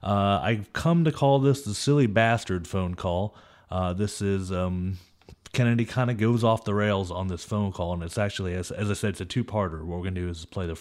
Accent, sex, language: American, male, English